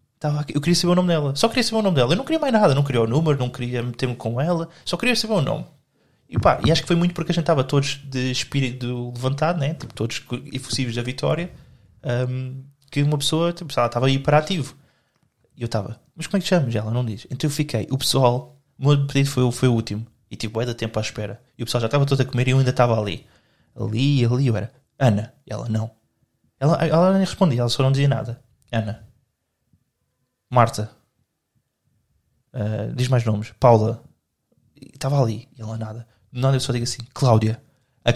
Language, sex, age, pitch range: Portuguese, male, 20-39, 120-150 Hz